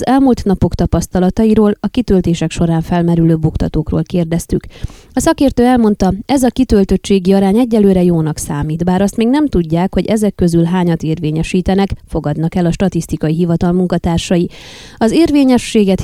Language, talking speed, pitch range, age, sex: Hungarian, 140 wpm, 170-220 Hz, 20-39, female